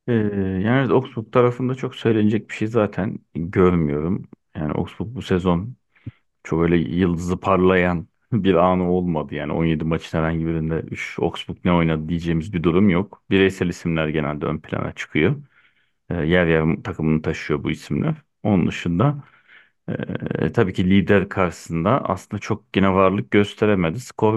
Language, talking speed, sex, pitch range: Turkish, 145 wpm, male, 85-115 Hz